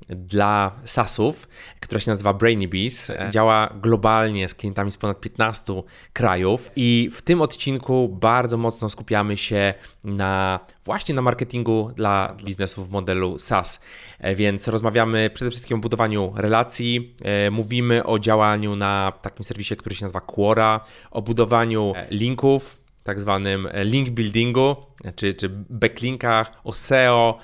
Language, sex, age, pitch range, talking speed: Polish, male, 20-39, 100-115 Hz, 130 wpm